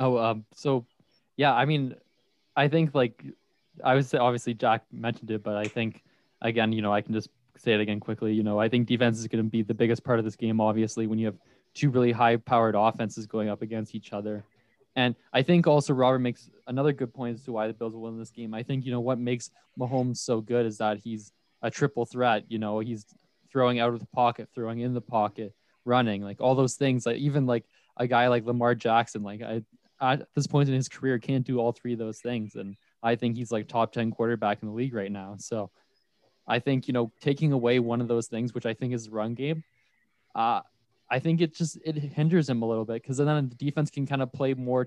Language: English